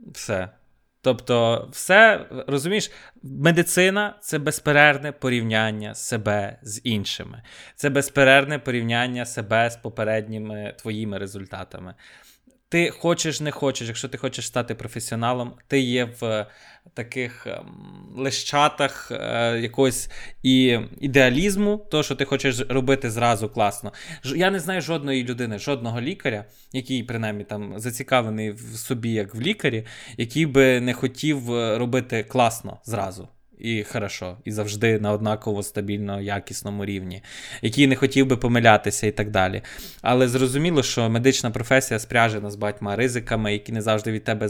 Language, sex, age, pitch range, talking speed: Ukrainian, male, 20-39, 110-135 Hz, 130 wpm